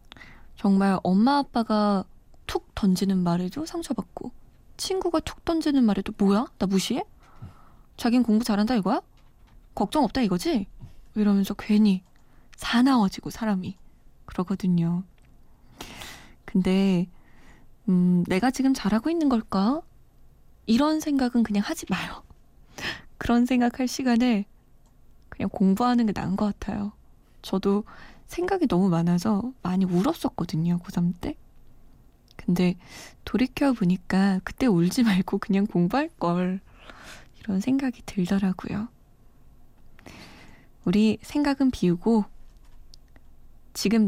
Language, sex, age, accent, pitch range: Korean, female, 20-39, native, 185-245 Hz